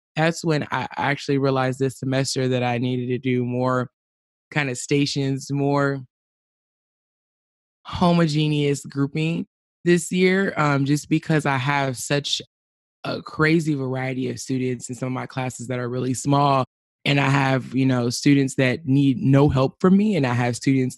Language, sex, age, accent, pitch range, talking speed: English, male, 20-39, American, 125-145 Hz, 165 wpm